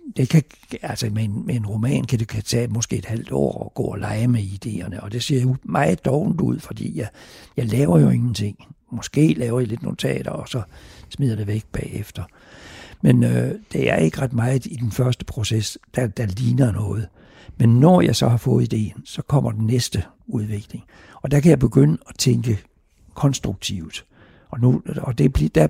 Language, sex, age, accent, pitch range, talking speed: Danish, male, 60-79, native, 105-125 Hz, 190 wpm